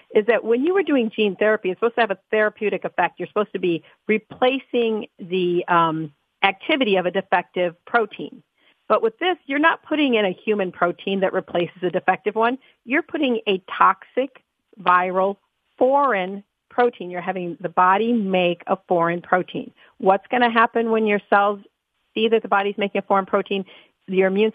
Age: 50-69